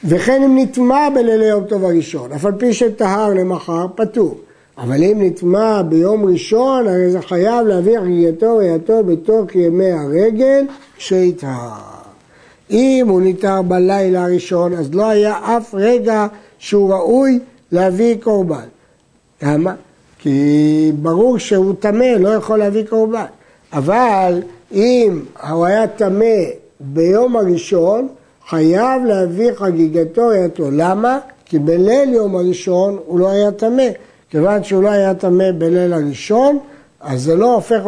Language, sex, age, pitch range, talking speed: Hebrew, male, 60-79, 170-230 Hz, 130 wpm